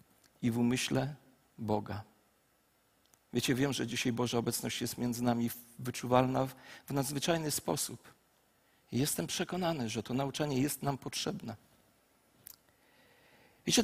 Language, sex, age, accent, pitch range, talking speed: Polish, male, 40-59, native, 130-200 Hz, 115 wpm